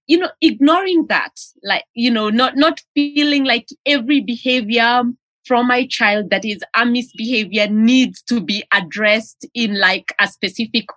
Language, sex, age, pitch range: English, female, 20-39, 200-265 Hz